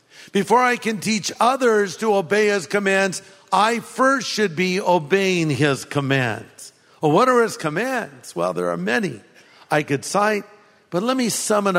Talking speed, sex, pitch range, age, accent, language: 170 wpm, male, 170-210 Hz, 50-69, American, English